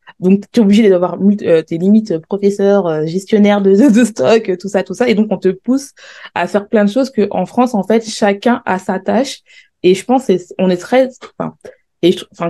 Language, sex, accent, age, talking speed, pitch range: French, female, French, 20-39, 235 wpm, 180-220 Hz